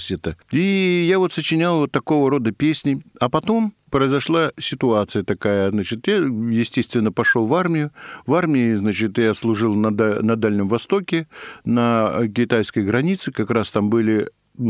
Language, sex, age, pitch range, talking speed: Russian, male, 50-69, 110-150 Hz, 140 wpm